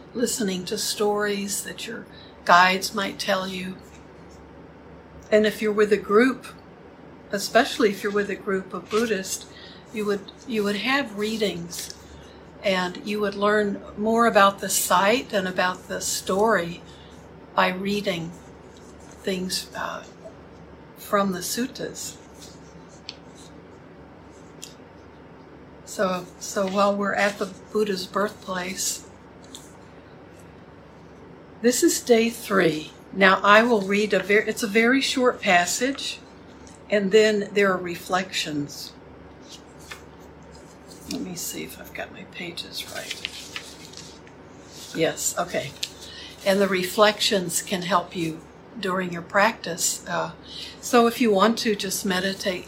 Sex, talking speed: female, 120 wpm